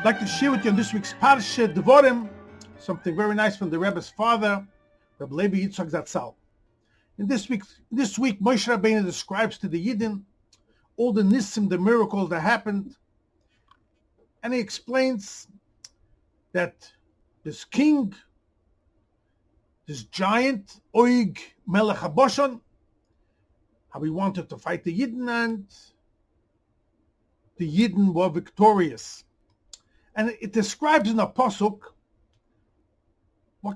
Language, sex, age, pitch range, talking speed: English, male, 50-69, 170-235 Hz, 125 wpm